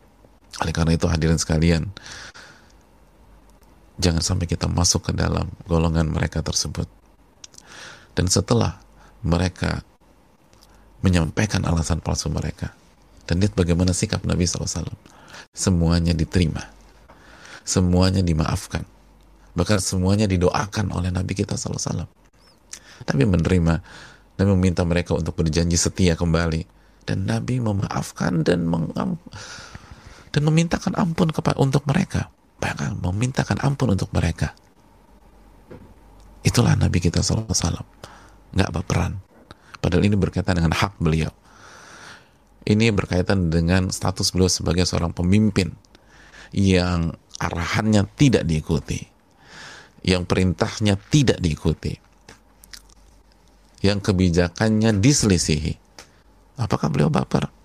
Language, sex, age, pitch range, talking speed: Indonesian, male, 30-49, 85-100 Hz, 105 wpm